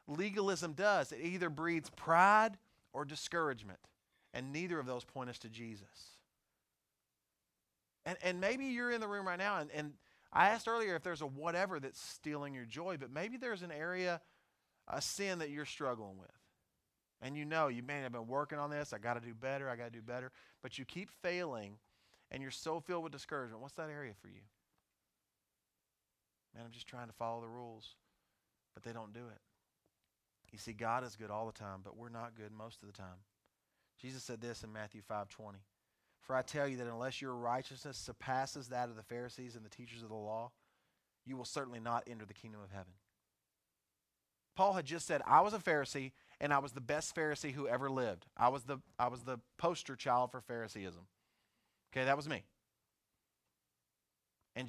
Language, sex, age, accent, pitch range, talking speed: English, male, 30-49, American, 110-150 Hz, 195 wpm